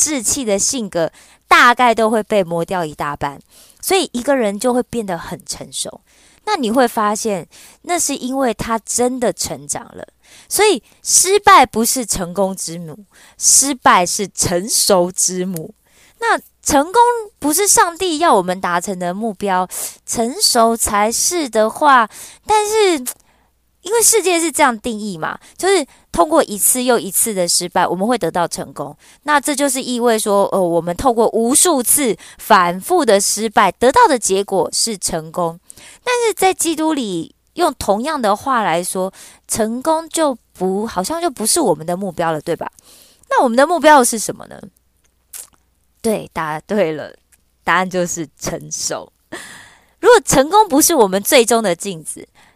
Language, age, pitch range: Korean, 20-39, 185-285 Hz